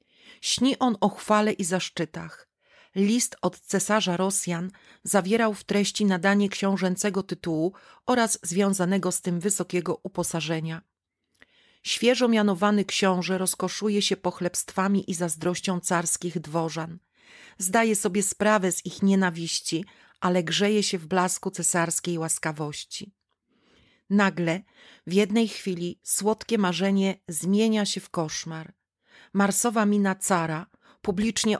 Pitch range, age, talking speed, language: 180-205 Hz, 40-59, 110 wpm, Polish